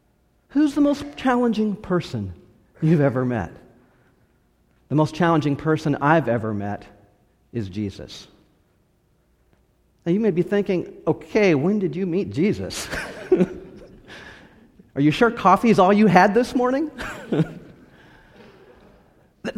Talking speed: 120 wpm